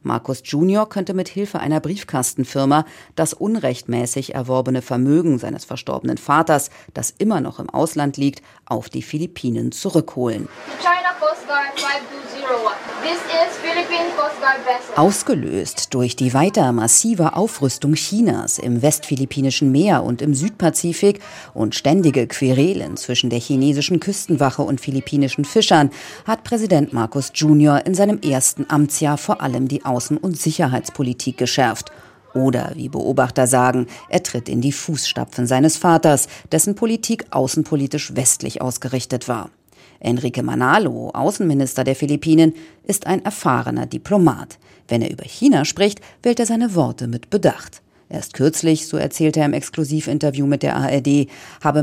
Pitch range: 130-185 Hz